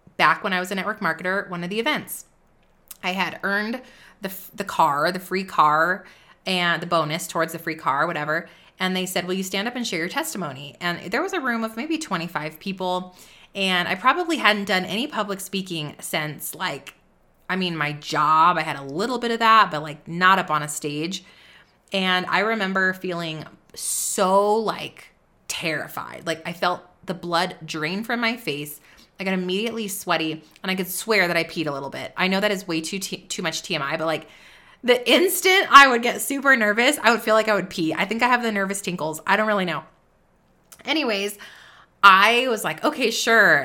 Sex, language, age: female, English, 20-39